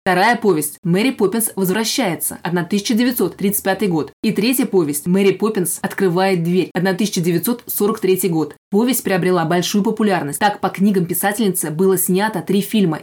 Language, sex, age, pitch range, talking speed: Russian, female, 20-39, 180-210 Hz, 130 wpm